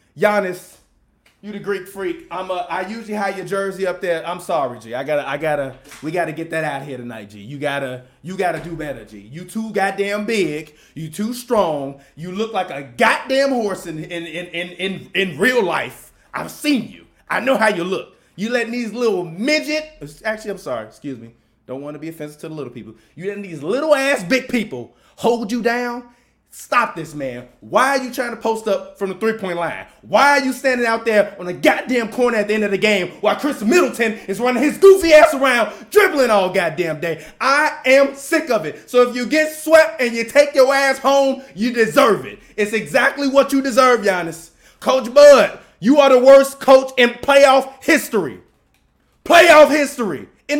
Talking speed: 210 wpm